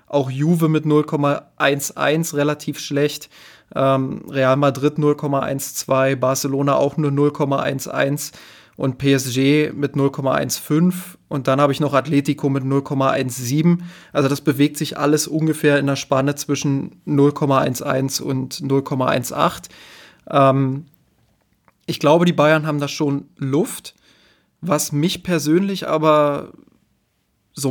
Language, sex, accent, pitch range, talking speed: German, male, German, 135-150 Hz, 110 wpm